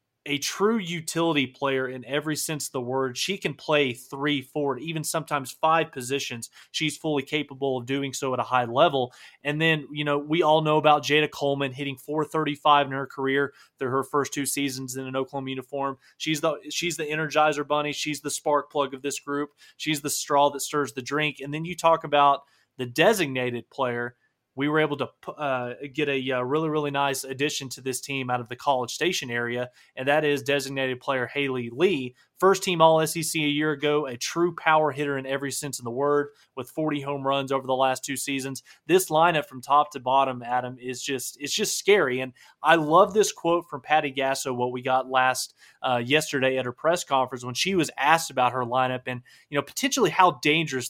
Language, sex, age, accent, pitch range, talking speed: English, male, 20-39, American, 130-155 Hz, 210 wpm